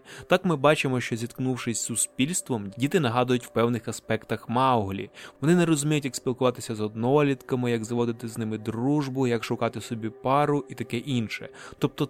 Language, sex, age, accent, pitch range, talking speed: Ukrainian, male, 20-39, native, 120-140 Hz, 165 wpm